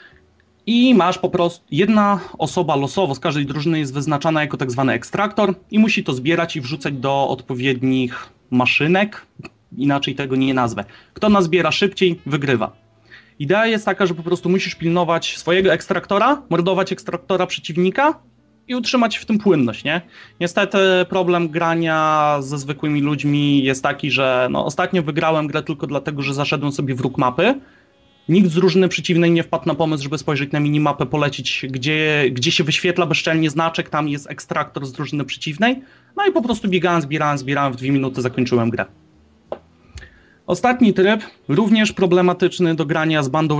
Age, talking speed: 30-49, 160 wpm